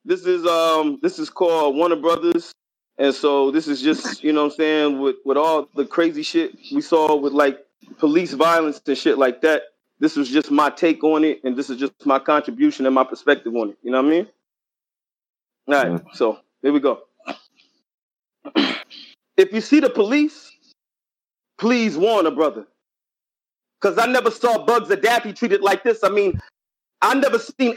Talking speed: 185 wpm